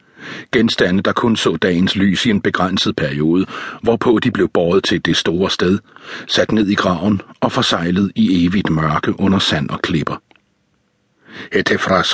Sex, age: male, 60-79